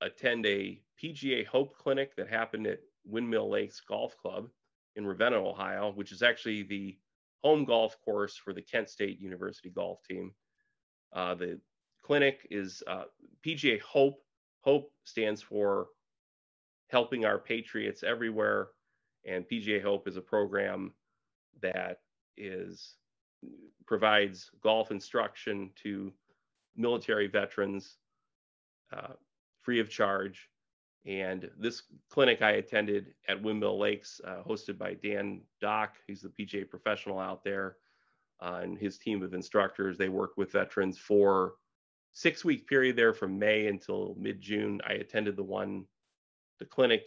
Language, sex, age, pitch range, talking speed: English, male, 30-49, 100-115 Hz, 135 wpm